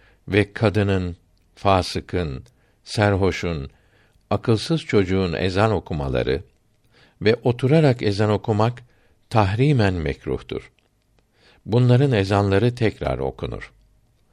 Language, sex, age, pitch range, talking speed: Turkish, male, 60-79, 90-120 Hz, 75 wpm